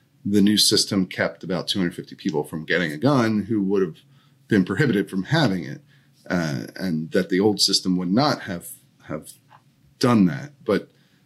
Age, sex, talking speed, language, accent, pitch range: 30-49, male, 170 wpm, English, American, 95-135 Hz